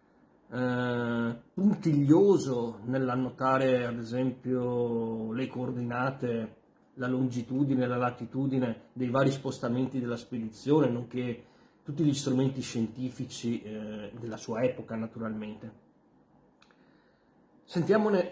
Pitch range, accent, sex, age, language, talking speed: 115-135 Hz, native, male, 30-49, Italian, 90 wpm